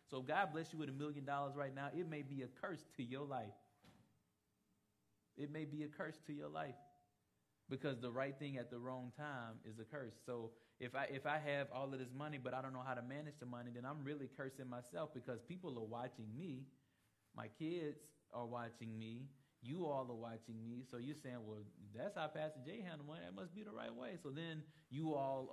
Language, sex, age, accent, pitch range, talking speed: English, male, 20-39, American, 115-145 Hz, 225 wpm